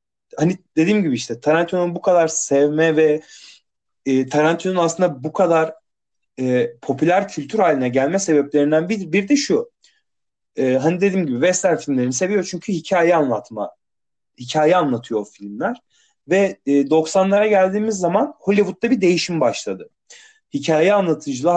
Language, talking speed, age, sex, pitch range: Turkish, 135 wpm, 30-49, male, 135-190 Hz